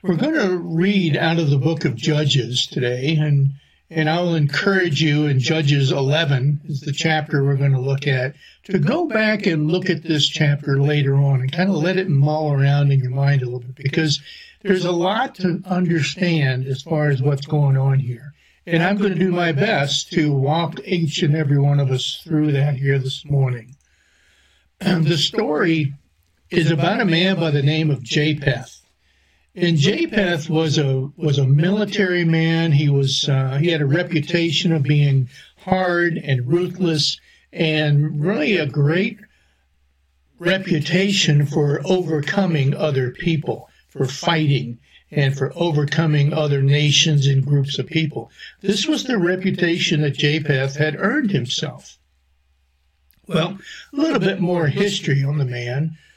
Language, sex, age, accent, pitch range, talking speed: English, male, 60-79, American, 140-170 Hz, 160 wpm